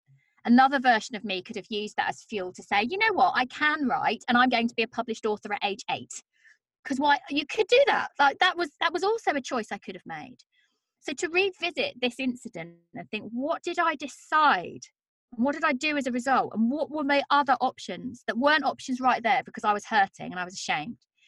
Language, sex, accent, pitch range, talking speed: English, female, British, 205-290 Hz, 235 wpm